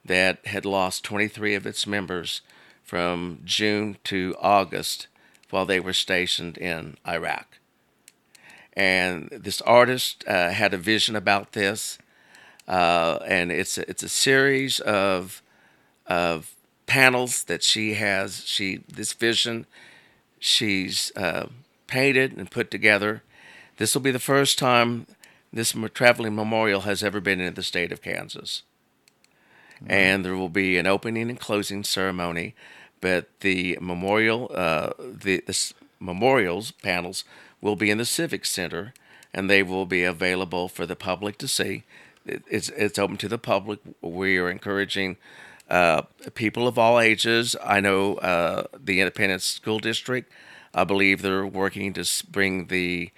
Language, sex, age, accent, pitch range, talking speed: English, male, 50-69, American, 95-110 Hz, 145 wpm